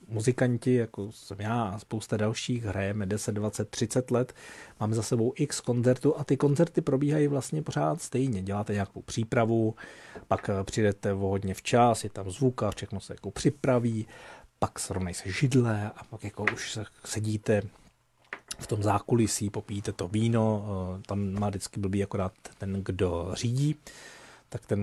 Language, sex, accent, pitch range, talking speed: Czech, male, native, 100-125 Hz, 150 wpm